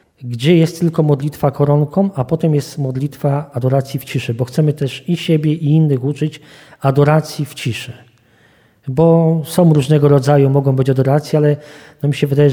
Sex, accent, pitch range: male, native, 130-150 Hz